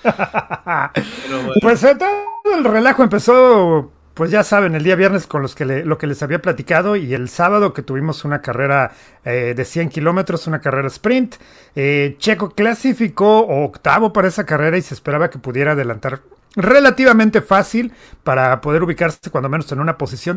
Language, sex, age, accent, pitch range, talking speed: English, male, 40-59, Mexican, 150-220 Hz, 155 wpm